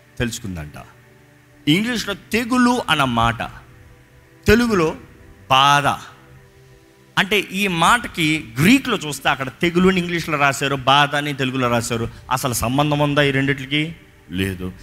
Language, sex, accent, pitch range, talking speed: Telugu, male, native, 130-195 Hz, 100 wpm